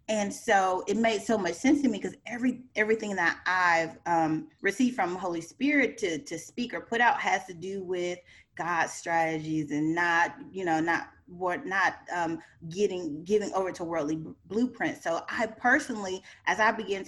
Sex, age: female, 30-49